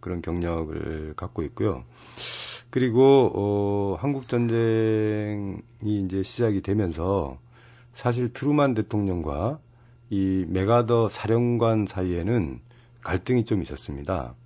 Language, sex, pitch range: Korean, male, 90-120 Hz